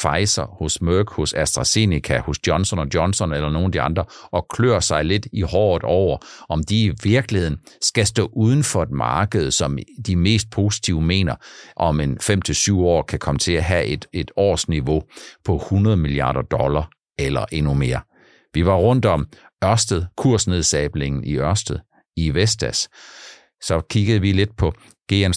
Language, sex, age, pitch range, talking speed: Danish, male, 60-79, 75-105 Hz, 165 wpm